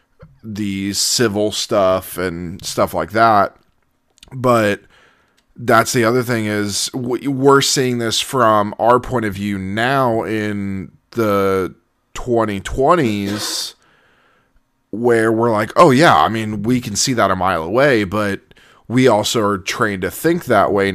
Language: English